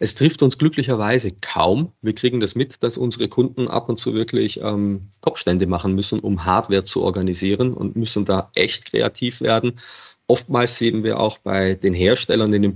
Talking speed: 185 wpm